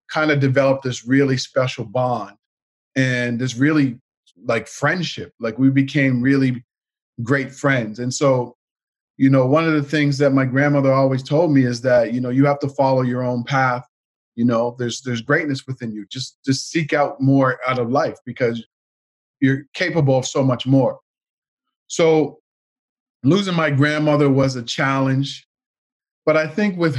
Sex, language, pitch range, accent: male, English, 125-145 Hz, American